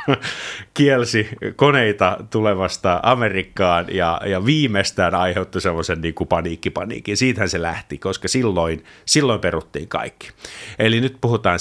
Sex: male